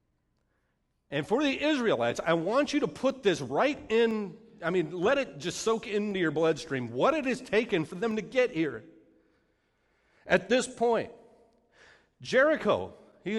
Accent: American